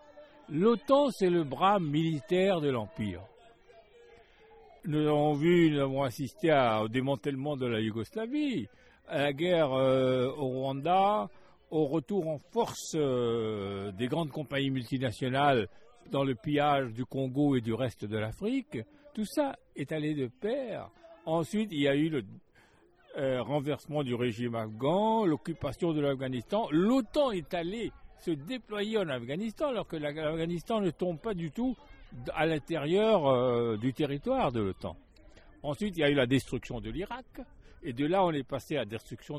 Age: 60-79